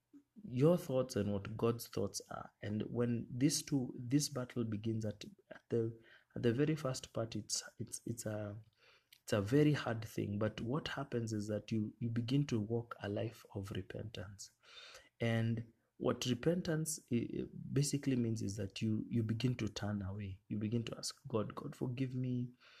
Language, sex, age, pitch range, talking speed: English, male, 30-49, 105-125 Hz, 170 wpm